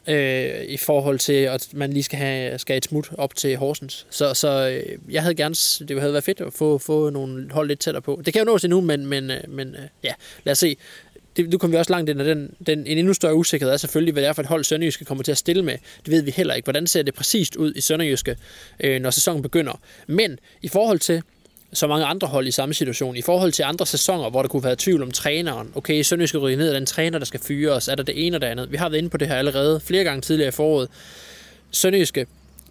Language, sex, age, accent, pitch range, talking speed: Danish, male, 20-39, native, 135-165 Hz, 260 wpm